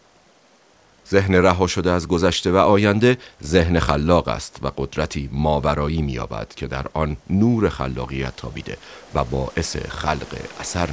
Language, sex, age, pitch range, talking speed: Persian, male, 40-59, 70-90 Hz, 135 wpm